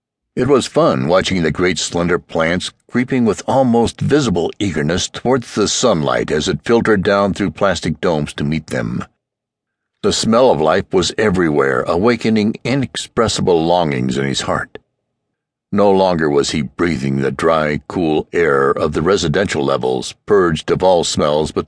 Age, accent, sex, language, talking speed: 60-79, American, male, English, 155 wpm